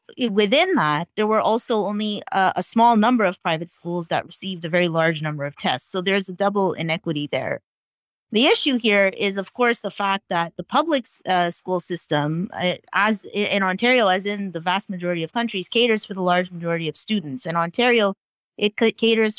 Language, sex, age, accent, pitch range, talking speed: English, female, 30-49, American, 180-215 Hz, 200 wpm